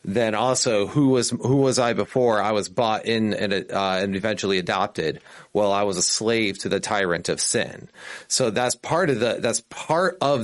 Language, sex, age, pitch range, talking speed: English, male, 30-49, 105-140 Hz, 205 wpm